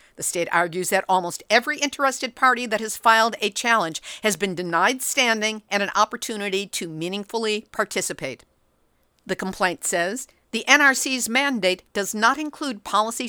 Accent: American